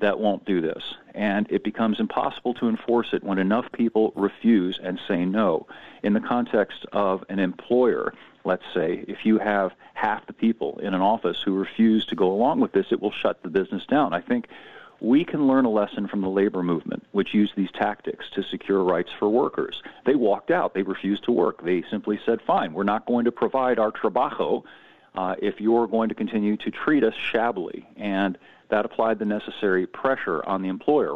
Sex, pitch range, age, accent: male, 95-115 Hz, 50-69, American